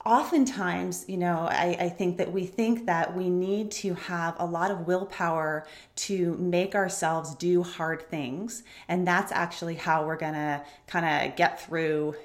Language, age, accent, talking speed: English, 30-49, American, 170 wpm